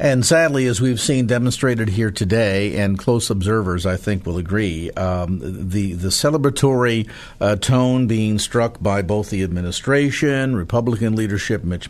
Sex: male